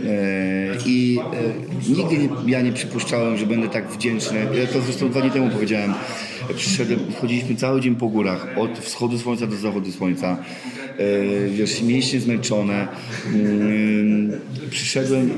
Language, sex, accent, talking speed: Polish, male, native, 125 wpm